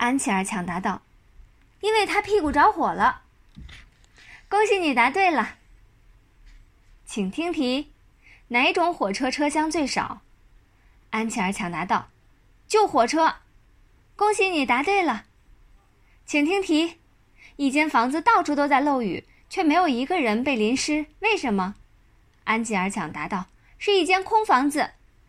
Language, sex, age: Chinese, female, 20-39